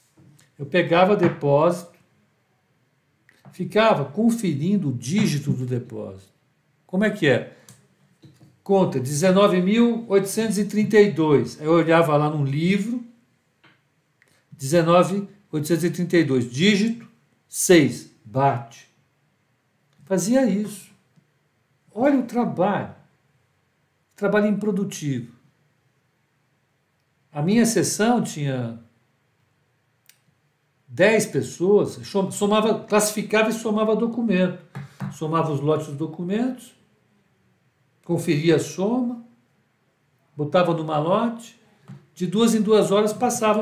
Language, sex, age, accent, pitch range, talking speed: Portuguese, male, 60-79, Brazilian, 145-205 Hz, 80 wpm